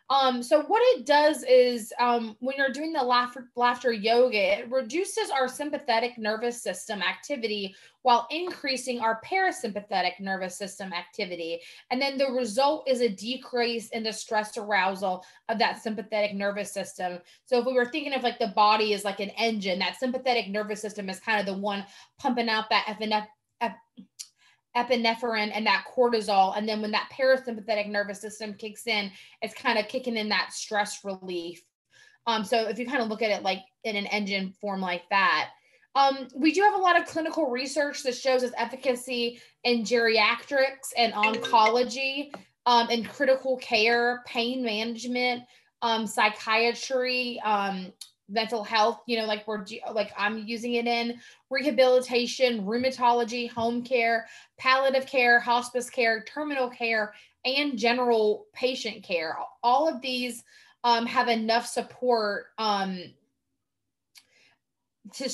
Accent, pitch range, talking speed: American, 215-255 Hz, 155 wpm